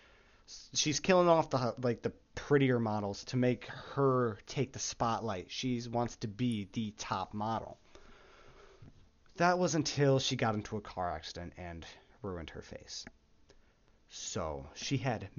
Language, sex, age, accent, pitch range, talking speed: English, male, 30-49, American, 105-135 Hz, 145 wpm